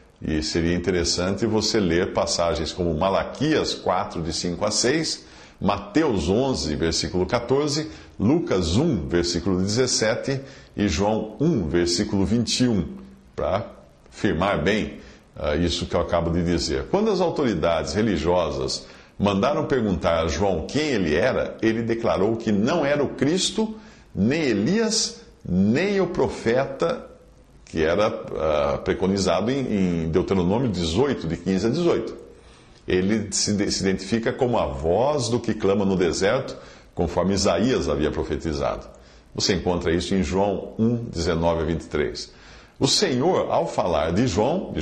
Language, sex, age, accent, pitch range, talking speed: Portuguese, male, 50-69, Brazilian, 85-115 Hz, 140 wpm